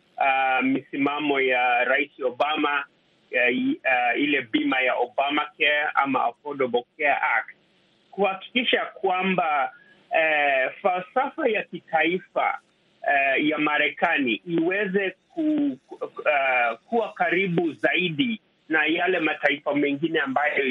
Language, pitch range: Swahili, 145-215 Hz